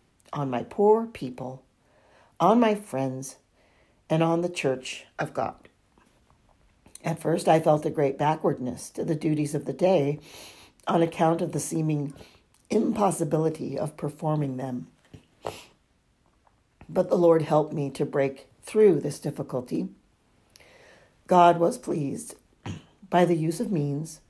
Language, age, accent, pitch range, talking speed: English, 50-69, American, 140-185 Hz, 130 wpm